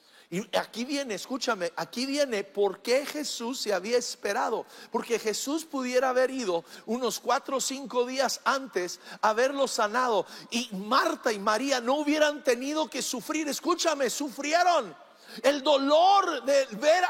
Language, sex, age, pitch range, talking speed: English, male, 50-69, 200-300 Hz, 145 wpm